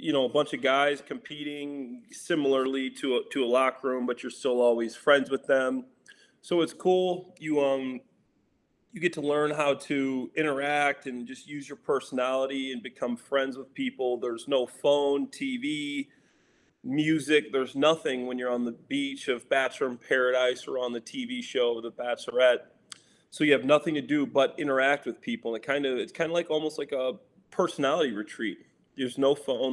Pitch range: 125-145 Hz